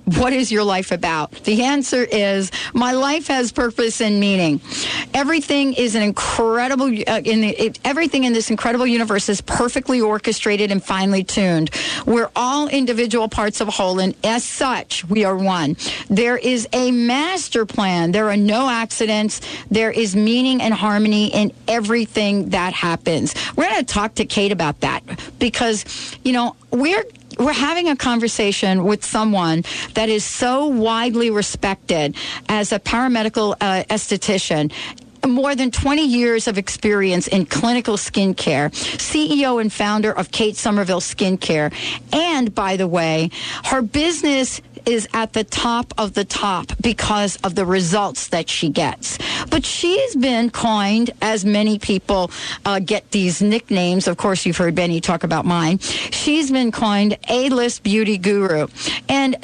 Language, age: English, 50-69